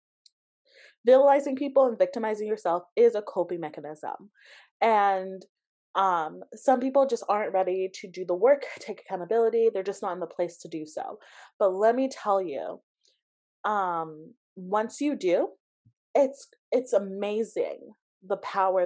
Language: English